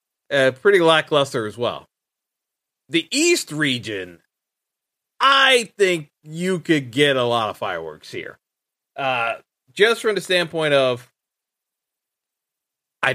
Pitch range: 130-170 Hz